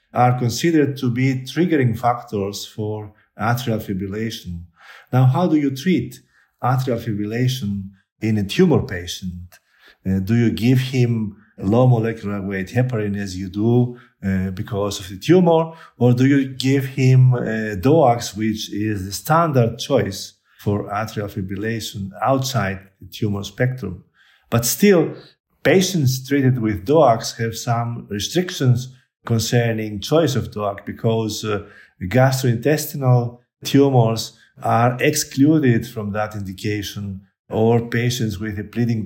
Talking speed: 130 wpm